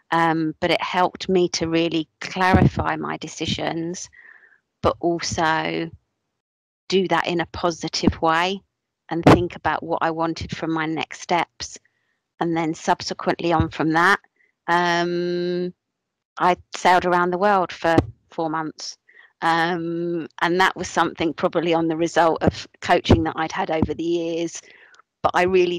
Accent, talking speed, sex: British, 145 wpm, female